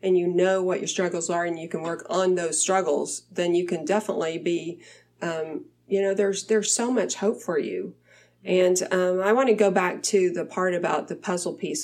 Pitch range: 170-205 Hz